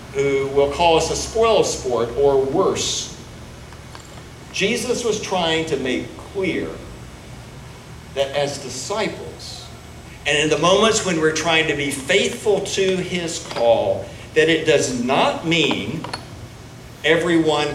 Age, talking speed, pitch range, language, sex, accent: 60-79, 120 wpm, 125-165 Hz, English, male, American